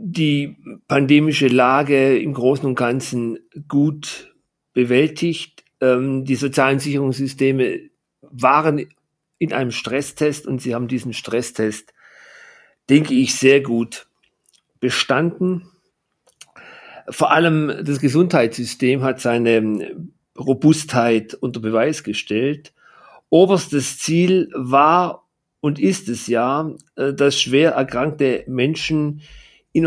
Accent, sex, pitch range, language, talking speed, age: German, male, 125-150 Hz, German, 95 wpm, 50-69